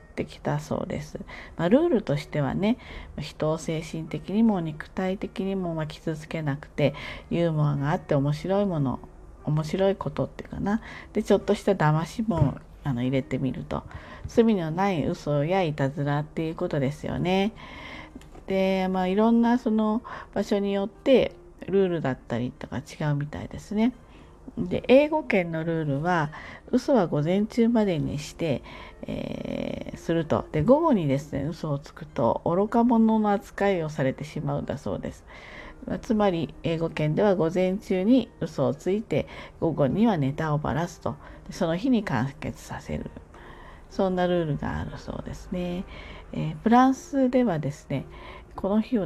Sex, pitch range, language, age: female, 150-215 Hz, Japanese, 40-59